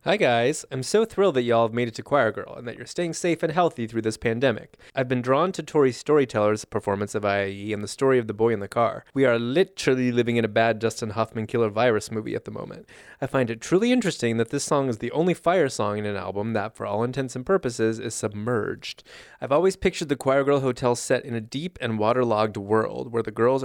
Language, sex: English, male